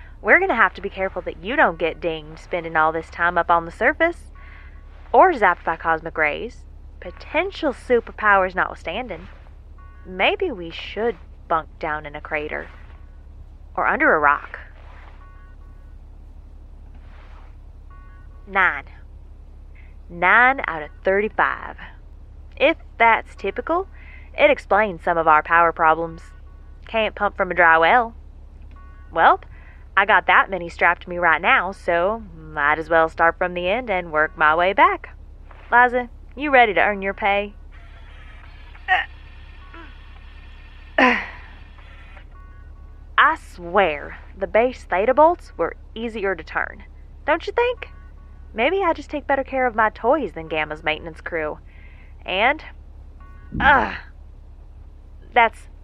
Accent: American